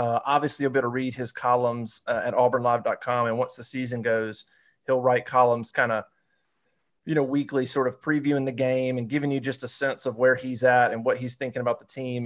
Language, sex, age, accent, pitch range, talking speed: English, male, 30-49, American, 120-140 Hz, 230 wpm